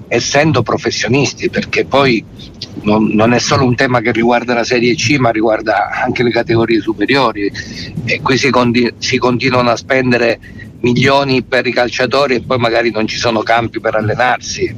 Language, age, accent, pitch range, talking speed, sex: Italian, 50-69, native, 110-125 Hz, 165 wpm, male